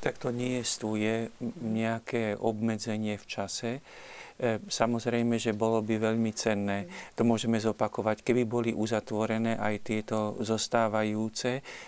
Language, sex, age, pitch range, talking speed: Slovak, male, 50-69, 110-115 Hz, 115 wpm